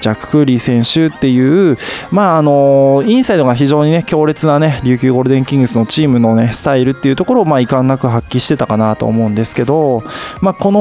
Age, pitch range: 20-39, 120-160 Hz